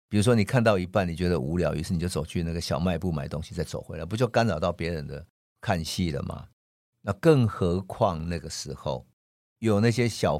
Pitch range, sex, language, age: 85-130 Hz, male, Chinese, 50-69